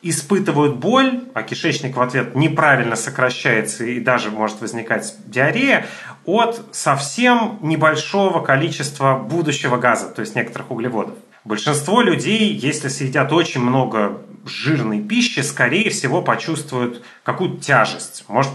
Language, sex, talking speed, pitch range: Russian, male, 120 wpm, 125-175 Hz